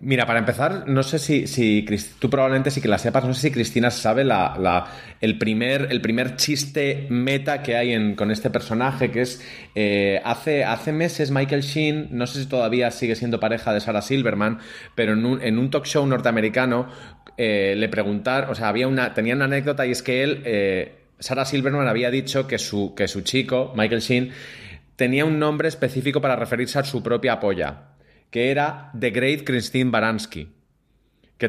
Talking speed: 190 wpm